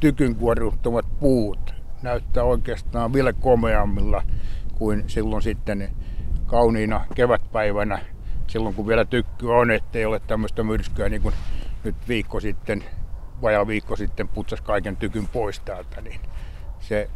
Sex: male